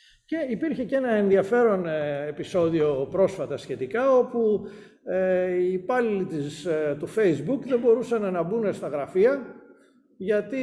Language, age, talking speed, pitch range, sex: Greek, 50-69, 115 wpm, 150-235 Hz, male